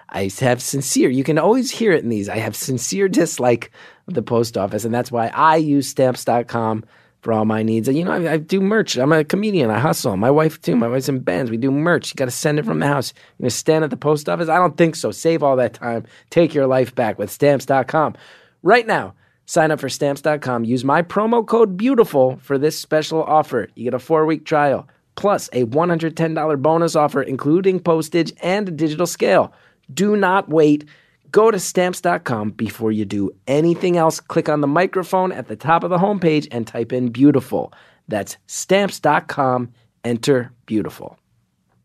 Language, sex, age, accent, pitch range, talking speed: English, male, 30-49, American, 115-160 Hz, 200 wpm